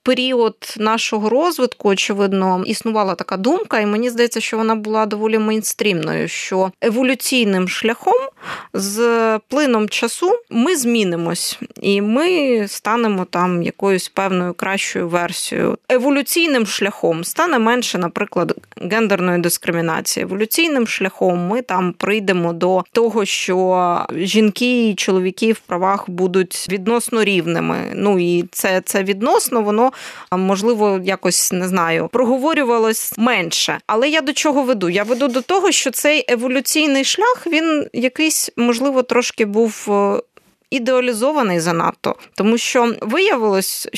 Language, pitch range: Ukrainian, 195-245 Hz